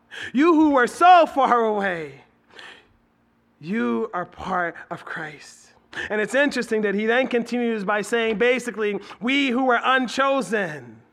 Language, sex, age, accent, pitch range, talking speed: English, male, 30-49, American, 220-270 Hz, 135 wpm